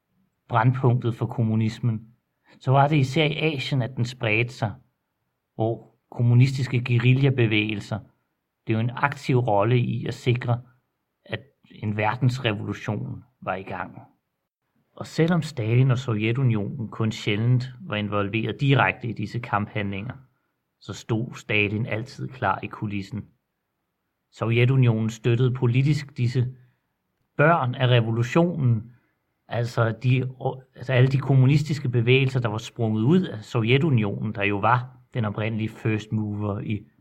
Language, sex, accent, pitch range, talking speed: Danish, male, native, 110-130 Hz, 120 wpm